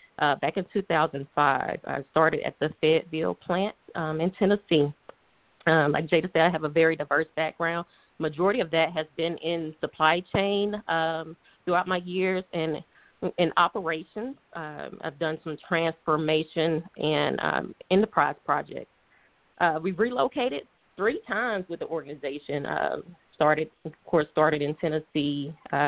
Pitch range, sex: 150-170 Hz, female